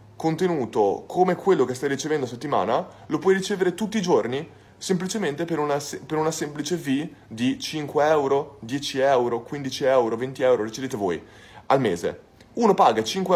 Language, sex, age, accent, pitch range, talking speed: Italian, male, 20-39, native, 135-185 Hz, 160 wpm